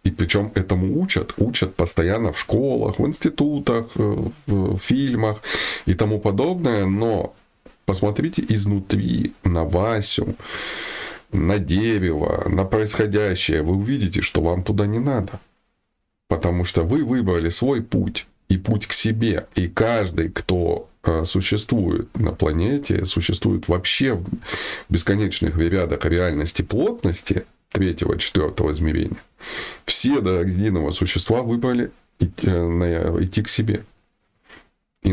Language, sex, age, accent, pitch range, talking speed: Russian, male, 20-39, native, 90-110 Hz, 115 wpm